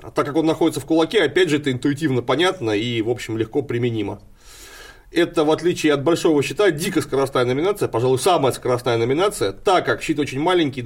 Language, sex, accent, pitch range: Russian, male, native, 125-160 Hz